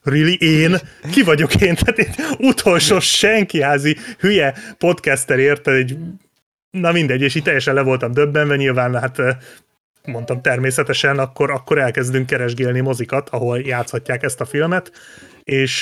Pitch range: 125-150 Hz